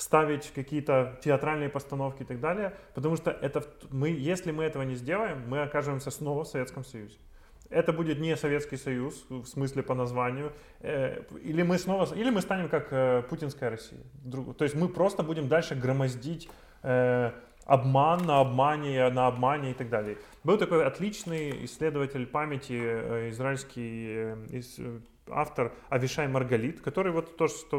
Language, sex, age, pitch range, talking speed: Russian, male, 20-39, 130-160 Hz, 145 wpm